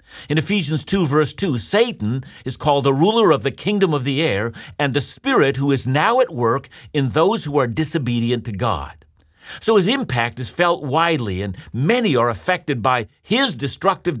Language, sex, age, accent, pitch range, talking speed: English, male, 50-69, American, 110-160 Hz, 185 wpm